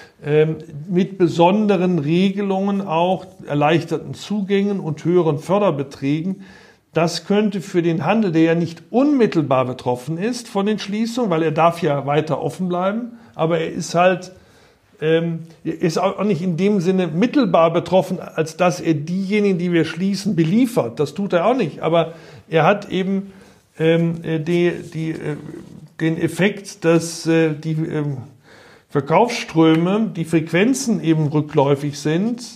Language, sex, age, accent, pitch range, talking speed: German, male, 50-69, German, 155-190 Hz, 140 wpm